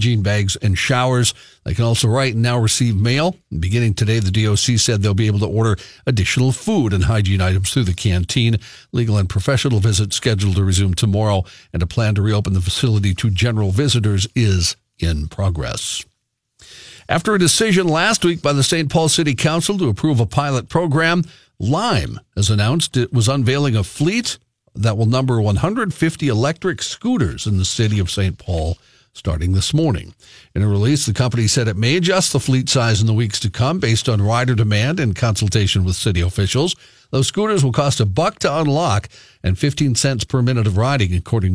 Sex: male